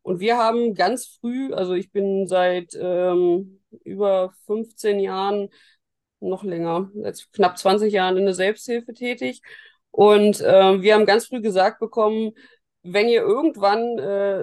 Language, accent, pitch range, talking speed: German, German, 190-220 Hz, 145 wpm